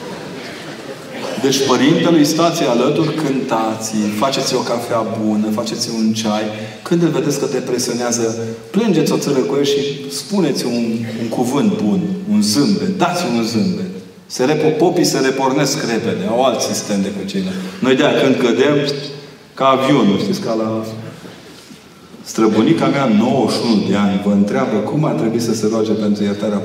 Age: 30-49